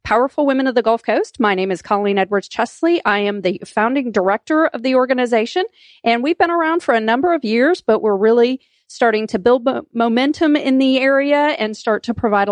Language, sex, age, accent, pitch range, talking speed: English, female, 40-59, American, 200-250 Hz, 200 wpm